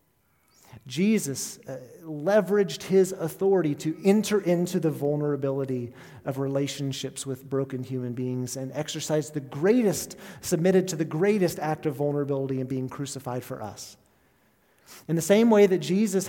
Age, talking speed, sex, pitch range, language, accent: 40-59, 135 wpm, male, 140-175 Hz, English, American